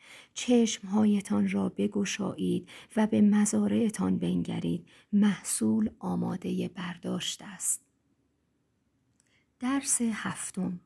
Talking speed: 70 wpm